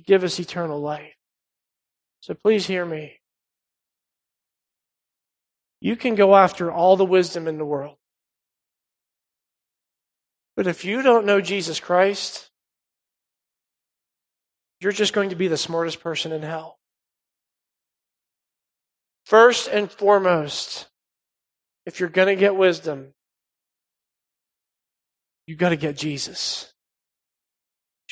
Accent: American